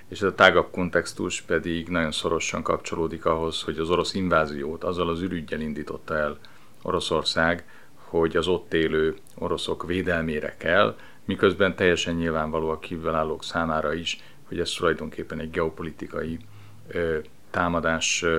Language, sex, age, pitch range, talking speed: Hungarian, male, 40-59, 80-95 Hz, 125 wpm